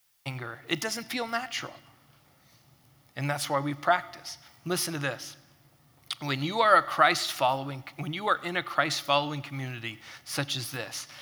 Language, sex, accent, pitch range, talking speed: English, male, American, 140-195 Hz, 155 wpm